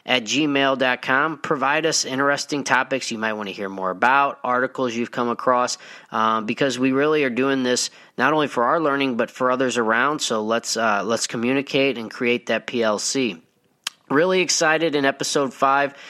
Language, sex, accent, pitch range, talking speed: English, male, American, 120-145 Hz, 175 wpm